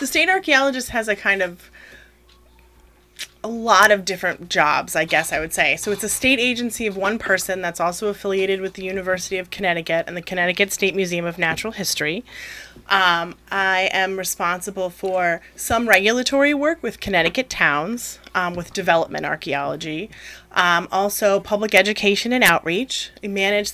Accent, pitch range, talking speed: American, 170-205 Hz, 160 wpm